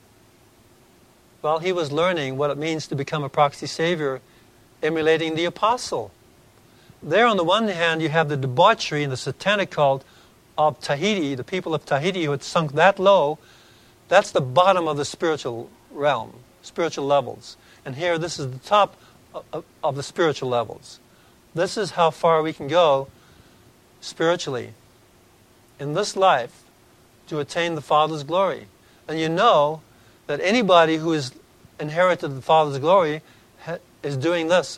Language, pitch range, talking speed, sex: English, 135-190 Hz, 155 wpm, male